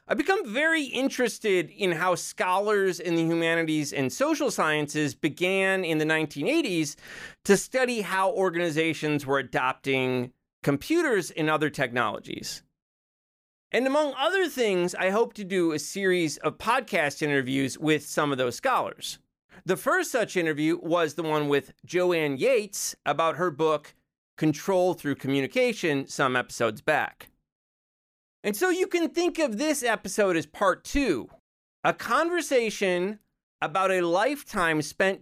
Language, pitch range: English, 150-205 Hz